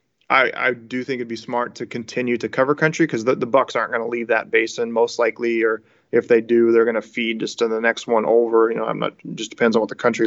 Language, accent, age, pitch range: English, American, 30-49, 115-125 Hz